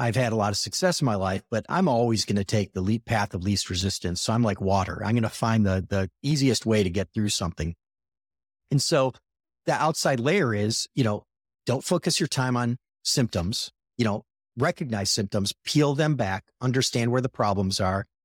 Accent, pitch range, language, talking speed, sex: American, 105-130 Hz, English, 205 wpm, male